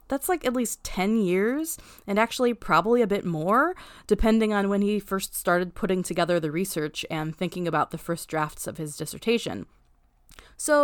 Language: English